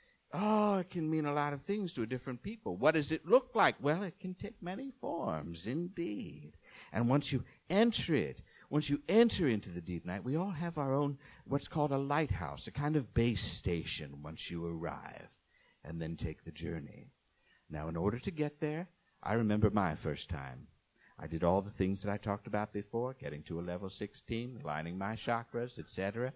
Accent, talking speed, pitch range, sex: American, 200 wpm, 90-145 Hz, male